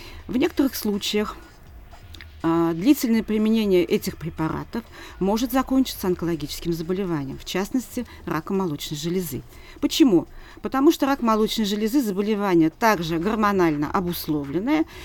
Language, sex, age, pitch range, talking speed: Russian, female, 40-59, 170-250 Hz, 105 wpm